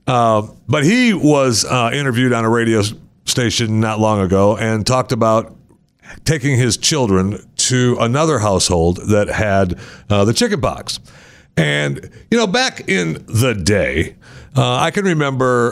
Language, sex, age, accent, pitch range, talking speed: English, male, 60-79, American, 100-145 Hz, 150 wpm